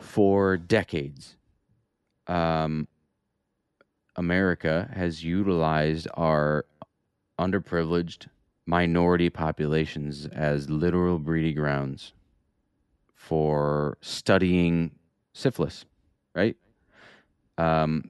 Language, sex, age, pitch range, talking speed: English, male, 30-49, 80-95 Hz, 65 wpm